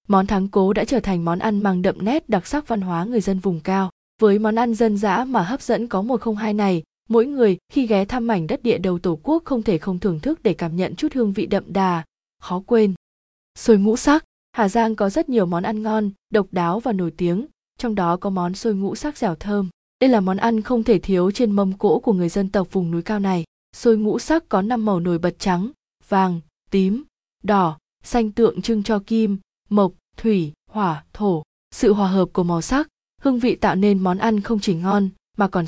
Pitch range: 185-225 Hz